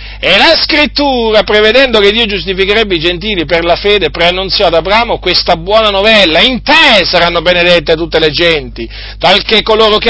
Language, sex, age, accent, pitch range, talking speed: Italian, male, 40-59, native, 125-200 Hz, 165 wpm